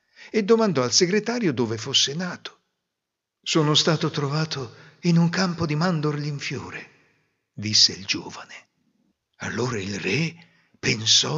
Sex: male